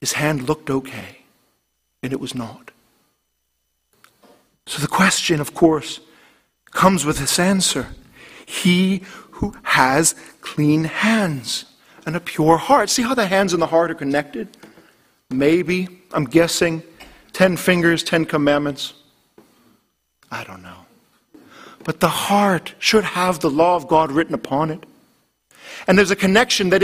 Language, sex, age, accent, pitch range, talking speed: English, male, 50-69, American, 155-230 Hz, 140 wpm